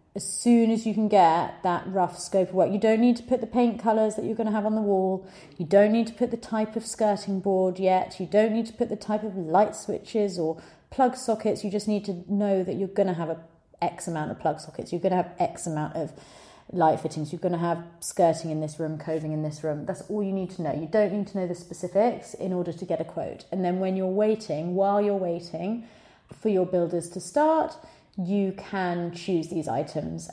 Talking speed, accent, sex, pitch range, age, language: 245 wpm, British, female, 165-205 Hz, 30-49, English